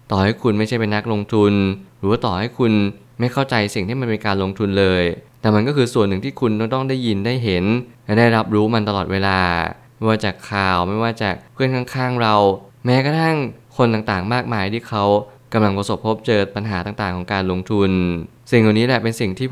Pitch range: 100-120 Hz